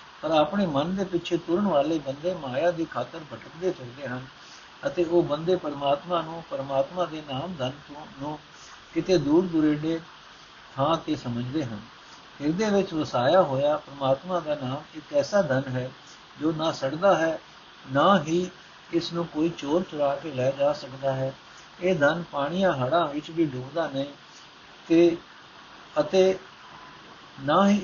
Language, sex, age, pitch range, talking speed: Punjabi, male, 60-79, 140-180 Hz, 145 wpm